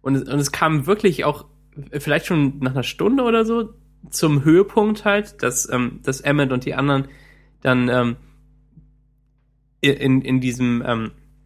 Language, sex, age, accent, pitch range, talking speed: German, male, 20-39, German, 130-145 Hz, 150 wpm